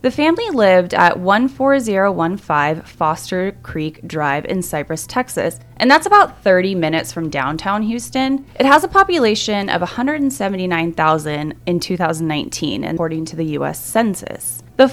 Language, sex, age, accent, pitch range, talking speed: English, female, 20-39, American, 165-265 Hz, 135 wpm